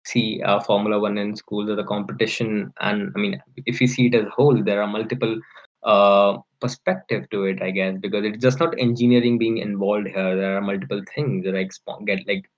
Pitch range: 100-125 Hz